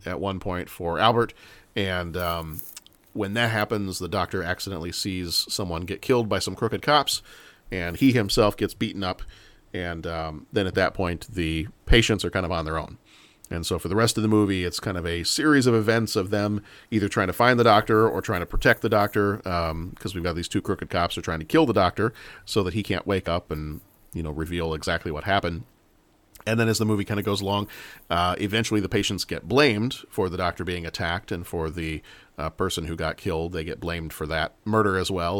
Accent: American